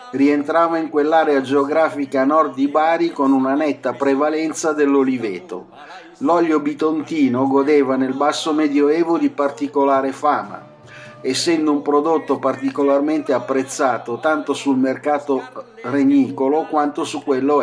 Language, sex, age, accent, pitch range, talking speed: Italian, male, 50-69, native, 135-155 Hz, 110 wpm